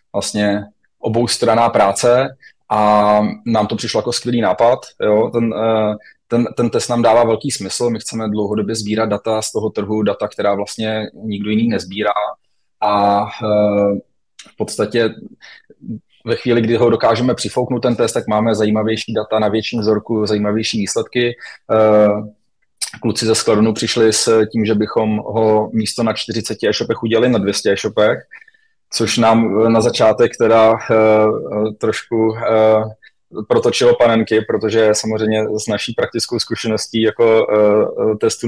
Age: 20-39